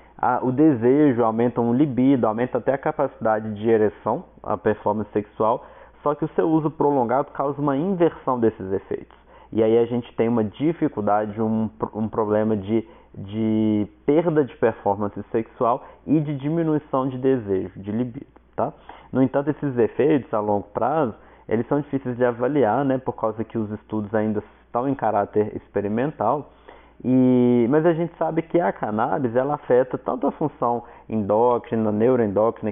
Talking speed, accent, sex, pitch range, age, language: 160 wpm, Brazilian, male, 105-140 Hz, 20-39, Portuguese